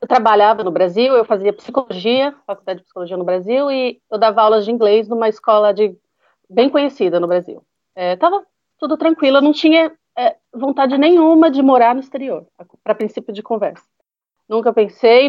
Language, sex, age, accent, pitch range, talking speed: Portuguese, female, 30-49, Brazilian, 215-285 Hz, 175 wpm